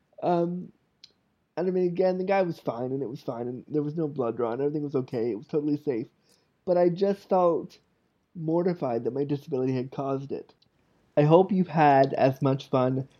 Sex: male